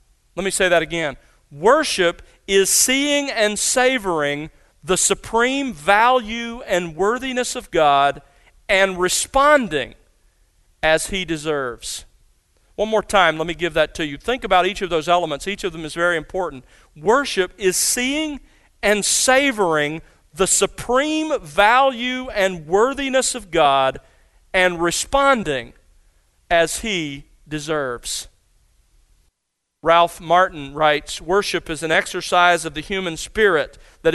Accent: American